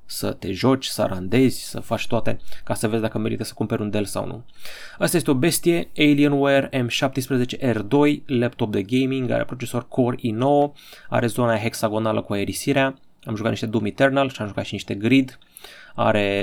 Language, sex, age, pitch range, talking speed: Romanian, male, 20-39, 110-140 Hz, 180 wpm